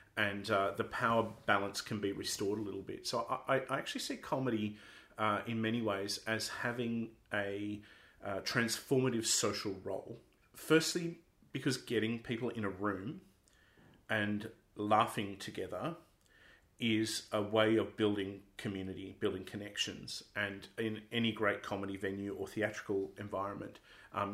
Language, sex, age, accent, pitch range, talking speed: English, male, 40-59, Australian, 100-115 Hz, 140 wpm